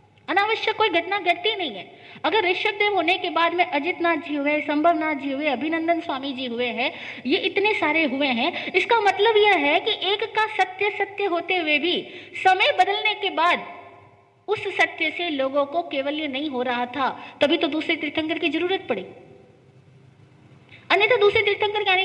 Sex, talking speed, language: female, 185 wpm, Hindi